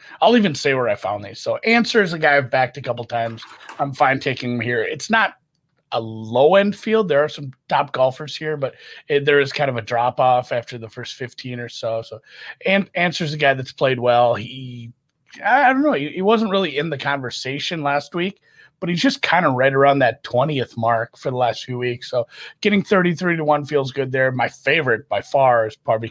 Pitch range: 130-175 Hz